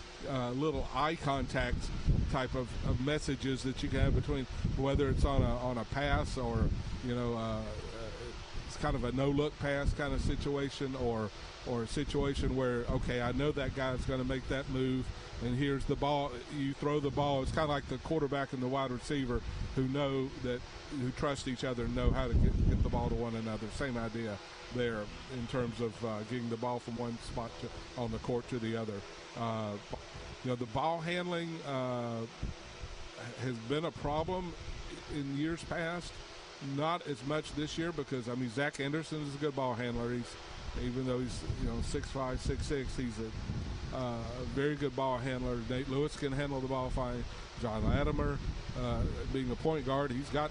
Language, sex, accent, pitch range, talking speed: English, male, American, 115-140 Hz, 195 wpm